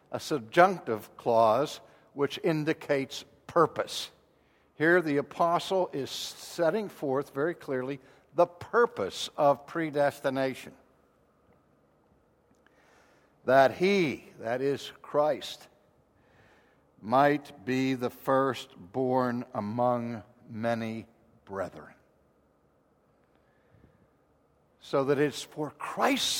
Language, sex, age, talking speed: English, male, 60-79, 80 wpm